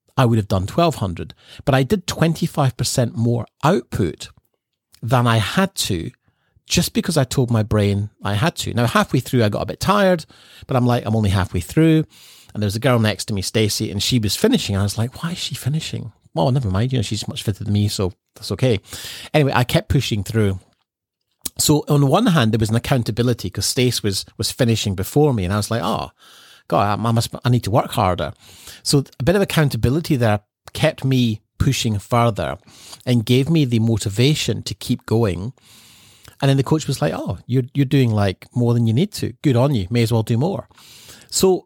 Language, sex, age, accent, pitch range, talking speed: English, male, 40-59, British, 105-135 Hz, 215 wpm